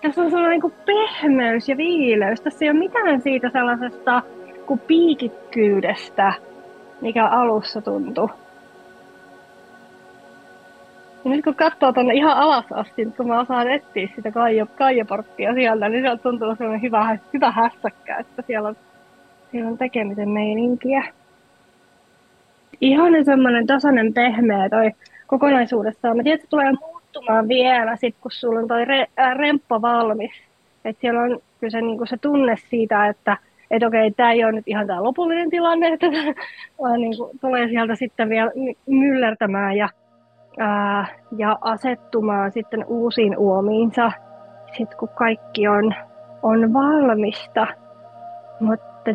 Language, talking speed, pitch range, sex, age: Finnish, 130 wpm, 220-270 Hz, female, 20-39